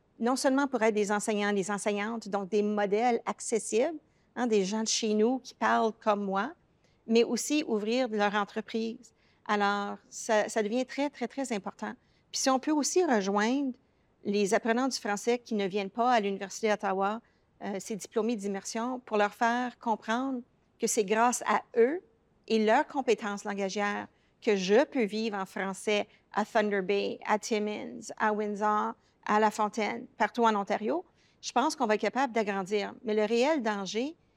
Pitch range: 205-240 Hz